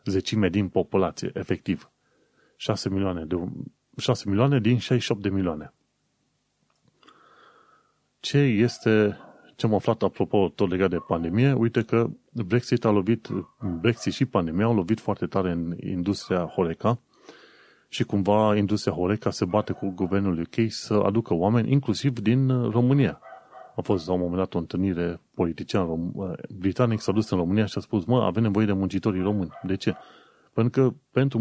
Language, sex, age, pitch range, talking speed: Romanian, male, 30-49, 95-120 Hz, 150 wpm